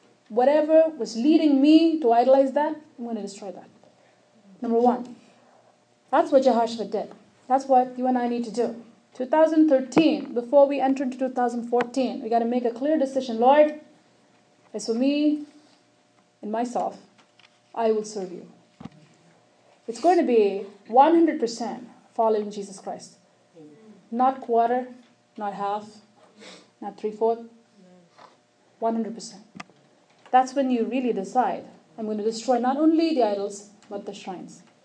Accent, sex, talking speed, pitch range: Indian, female, 140 wpm, 220-295 Hz